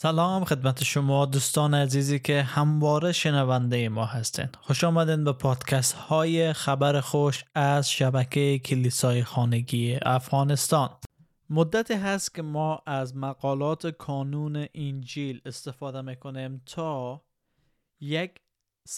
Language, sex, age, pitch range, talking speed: Persian, male, 20-39, 135-160 Hz, 110 wpm